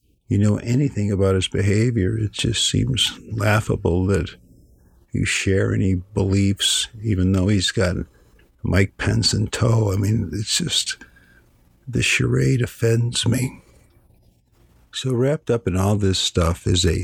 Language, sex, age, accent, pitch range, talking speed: English, male, 50-69, American, 90-105 Hz, 140 wpm